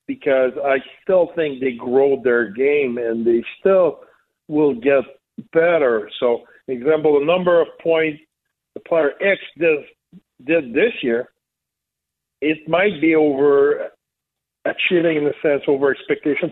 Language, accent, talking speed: English, American, 130 wpm